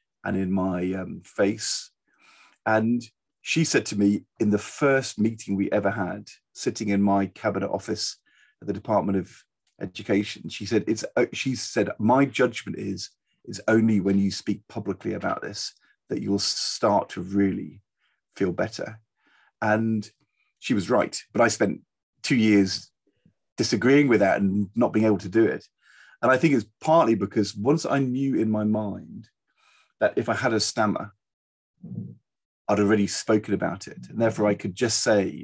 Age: 40-59